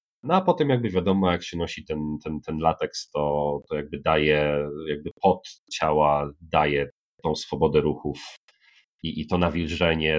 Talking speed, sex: 160 wpm, male